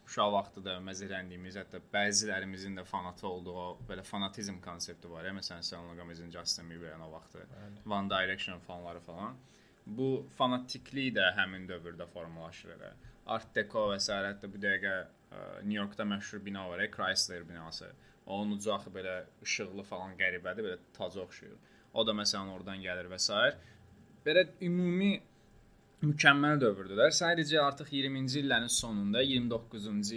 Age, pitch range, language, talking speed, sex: 20-39, 95-130 Hz, Turkish, 135 wpm, male